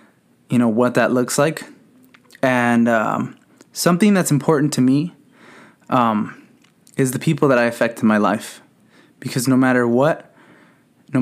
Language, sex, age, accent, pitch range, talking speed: English, male, 20-39, American, 120-140 Hz, 150 wpm